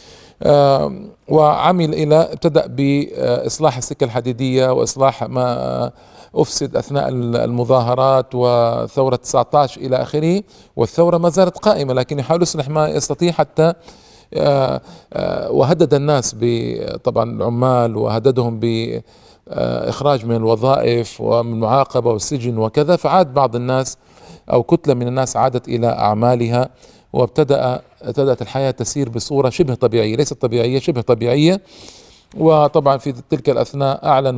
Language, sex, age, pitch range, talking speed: Arabic, male, 40-59, 120-145 Hz, 110 wpm